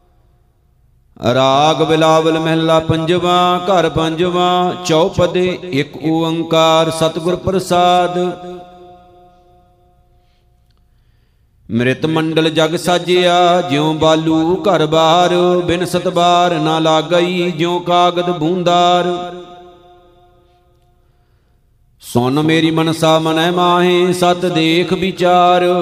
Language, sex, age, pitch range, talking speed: Punjabi, male, 50-69, 160-180 Hz, 85 wpm